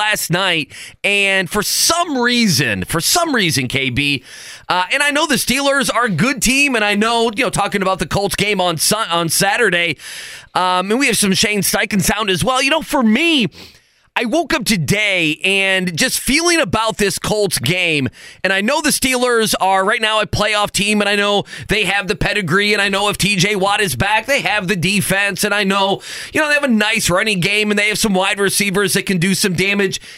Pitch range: 180-220 Hz